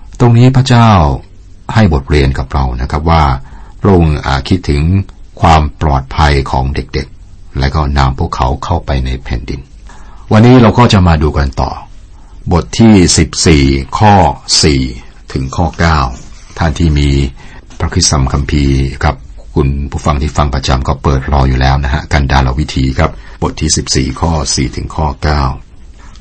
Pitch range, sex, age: 70-90 Hz, male, 60-79